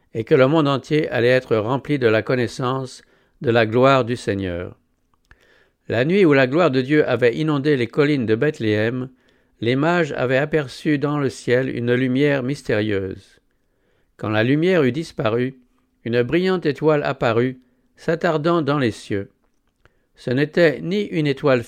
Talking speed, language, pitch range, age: 160 wpm, English, 120-155 Hz, 60-79